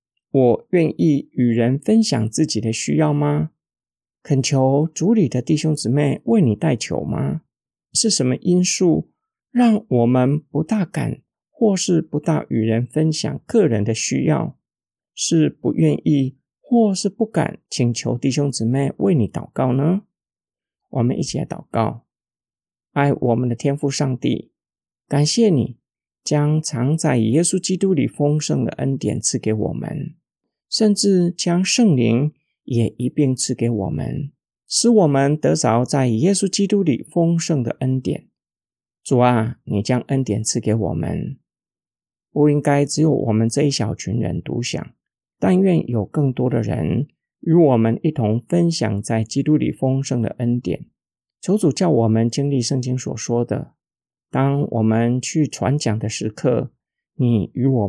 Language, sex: Chinese, male